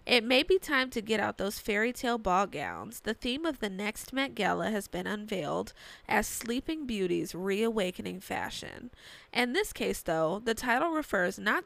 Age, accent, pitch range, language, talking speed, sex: 20-39, American, 185-250 Hz, English, 175 wpm, female